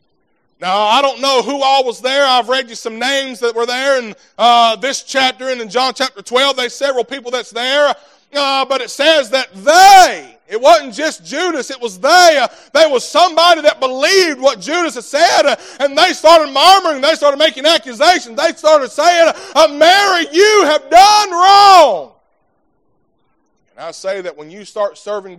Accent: American